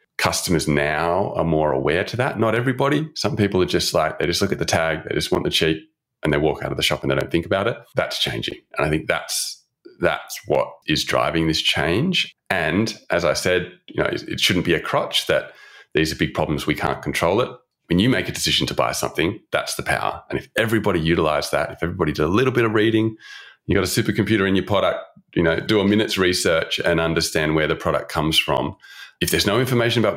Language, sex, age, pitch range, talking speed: English, male, 30-49, 75-95 Hz, 235 wpm